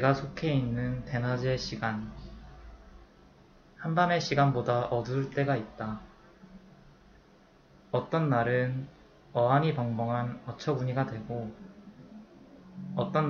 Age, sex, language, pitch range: 20-39, male, Korean, 115-145 Hz